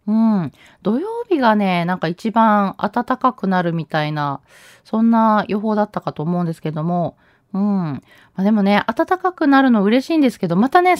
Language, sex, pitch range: Japanese, female, 170-240 Hz